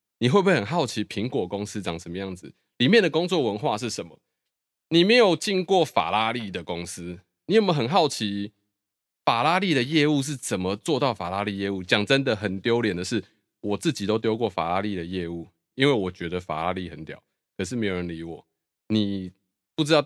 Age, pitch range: 20-39, 100-160 Hz